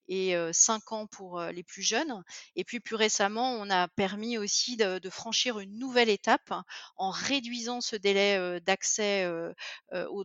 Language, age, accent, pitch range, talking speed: French, 30-49, French, 190-230 Hz, 160 wpm